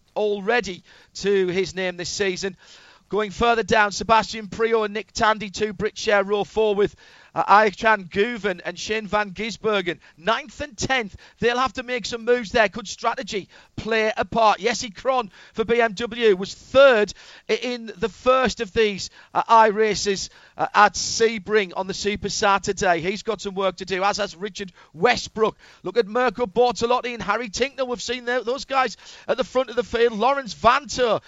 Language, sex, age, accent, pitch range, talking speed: English, male, 40-59, British, 195-230 Hz, 175 wpm